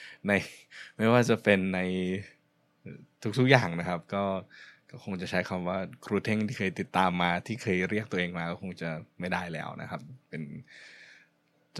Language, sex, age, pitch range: Thai, male, 20-39, 90-110 Hz